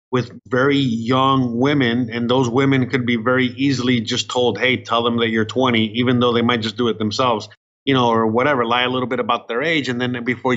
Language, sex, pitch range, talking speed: English, male, 115-140 Hz, 235 wpm